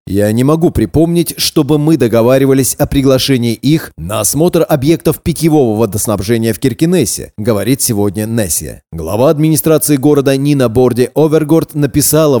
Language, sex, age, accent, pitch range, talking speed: Russian, male, 30-49, native, 115-145 Hz, 130 wpm